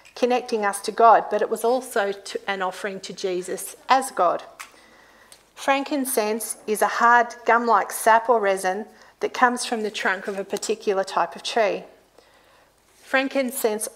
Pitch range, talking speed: 200-245 Hz, 145 wpm